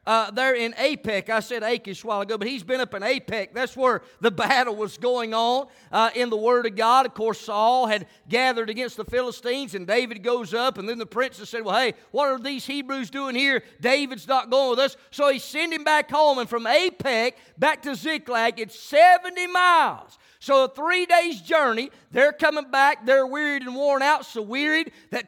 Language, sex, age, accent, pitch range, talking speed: English, male, 40-59, American, 235-295 Hz, 215 wpm